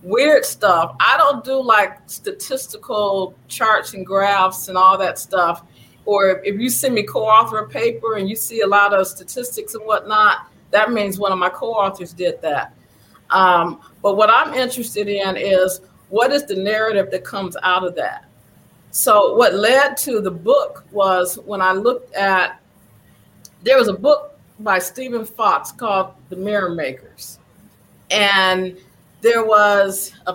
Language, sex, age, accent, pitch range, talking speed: English, female, 40-59, American, 185-225 Hz, 160 wpm